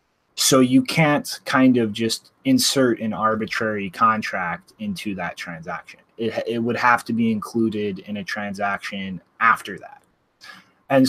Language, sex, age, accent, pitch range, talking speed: English, male, 20-39, American, 105-130 Hz, 140 wpm